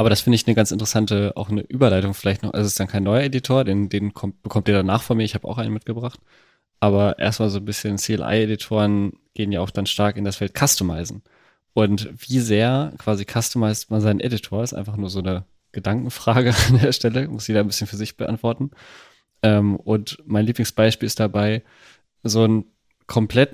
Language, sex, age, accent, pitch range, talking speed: German, male, 20-39, German, 105-120 Hz, 200 wpm